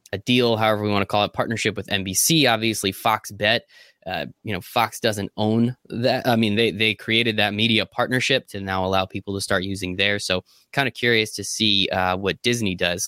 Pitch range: 100-125 Hz